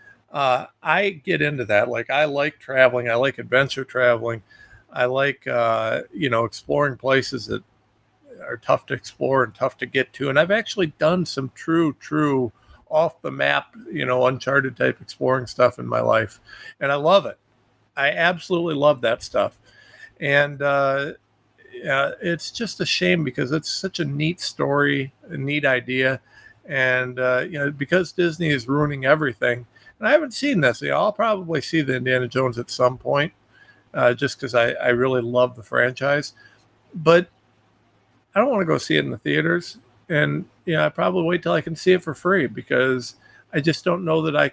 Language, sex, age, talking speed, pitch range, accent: English, male, 50-69, 190 wpm, 125-165 Hz, American